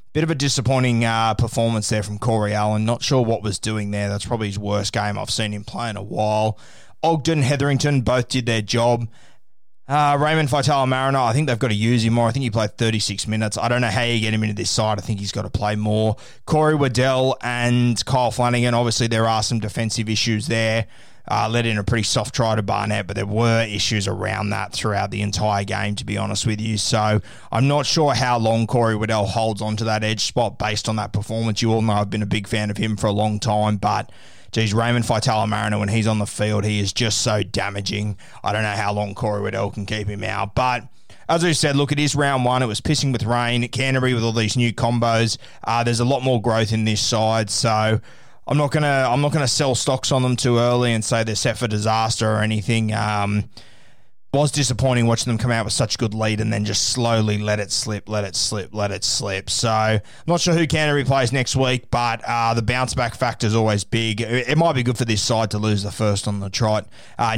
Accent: Australian